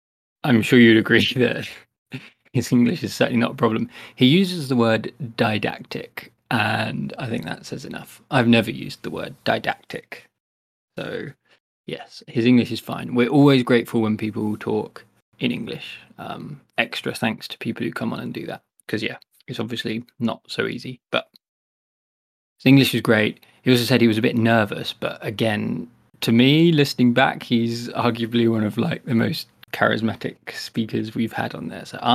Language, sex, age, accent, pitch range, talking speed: English, male, 20-39, British, 115-125 Hz, 175 wpm